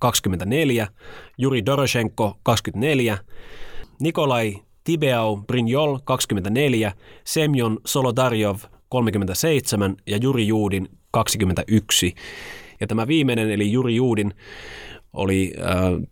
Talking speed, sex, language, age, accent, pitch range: 85 wpm, male, Finnish, 30-49, native, 90-115 Hz